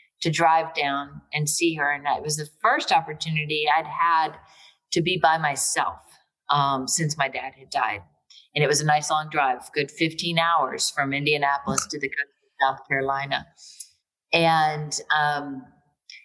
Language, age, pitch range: English, 40-59, 140-160 Hz